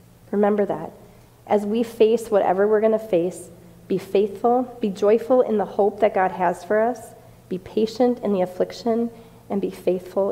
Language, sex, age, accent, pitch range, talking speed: English, female, 40-59, American, 180-230 Hz, 175 wpm